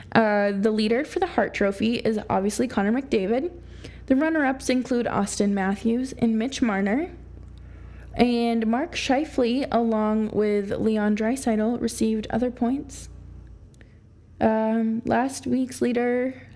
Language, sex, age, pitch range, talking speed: English, female, 20-39, 205-245 Hz, 120 wpm